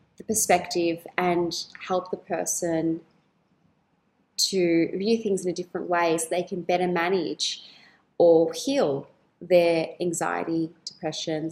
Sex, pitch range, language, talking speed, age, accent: female, 175-220 Hz, English, 115 wpm, 20-39, Australian